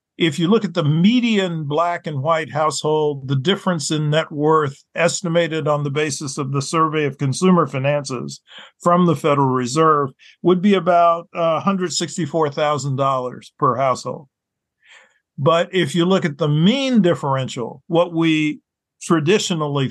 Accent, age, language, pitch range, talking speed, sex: American, 50-69, English, 140-170 Hz, 140 wpm, male